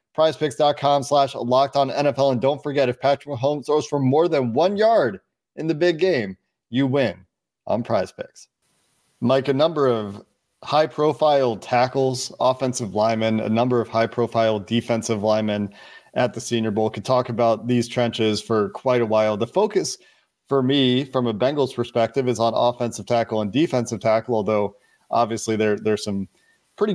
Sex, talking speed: male, 170 wpm